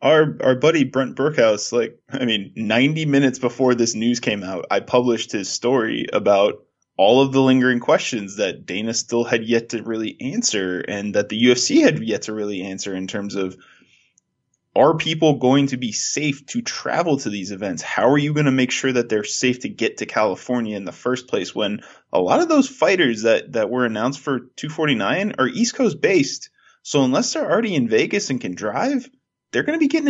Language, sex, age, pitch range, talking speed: English, male, 20-39, 115-160 Hz, 210 wpm